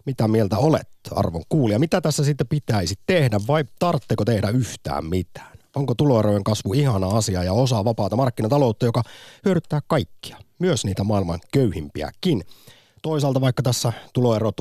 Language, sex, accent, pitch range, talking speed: Finnish, male, native, 100-135 Hz, 140 wpm